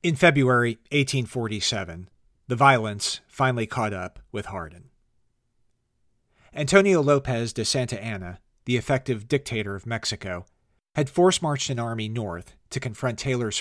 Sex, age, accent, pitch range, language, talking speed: male, 40-59, American, 105-135 Hz, English, 125 wpm